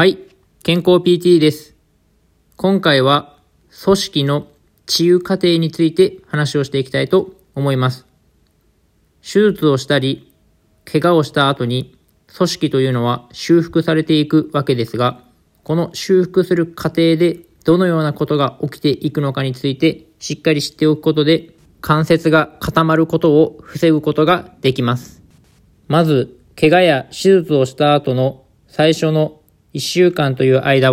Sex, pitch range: male, 140-165 Hz